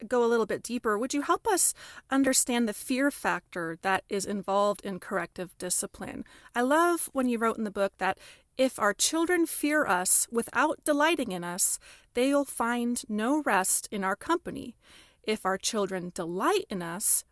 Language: English